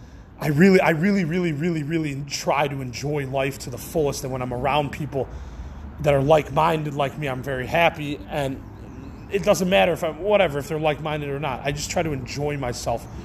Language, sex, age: English, male, 30-49